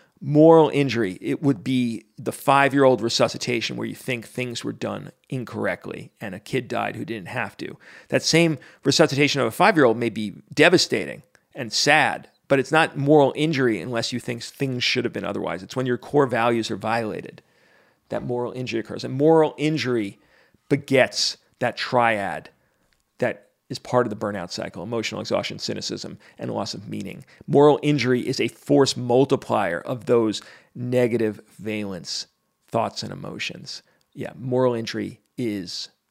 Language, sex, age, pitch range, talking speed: English, male, 40-59, 115-140 Hz, 155 wpm